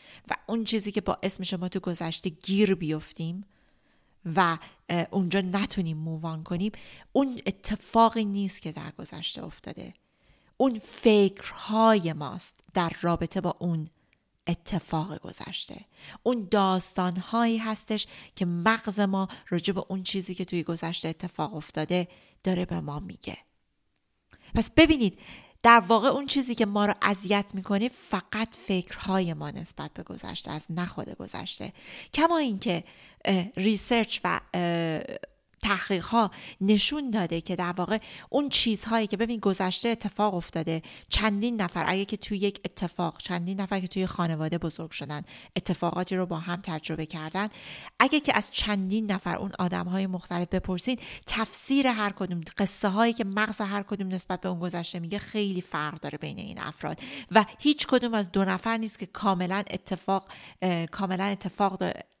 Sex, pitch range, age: female, 175-215 Hz, 30-49